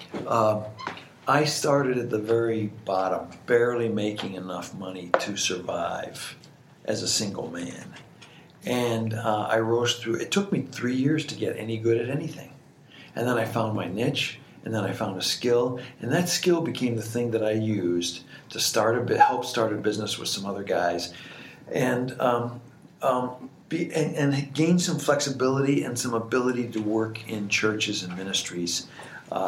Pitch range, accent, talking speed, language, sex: 110-140 Hz, American, 175 wpm, English, male